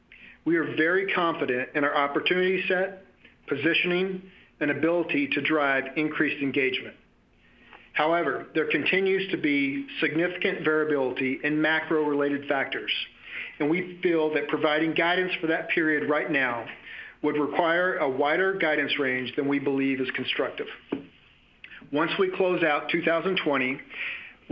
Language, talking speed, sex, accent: English, 125 wpm, male, American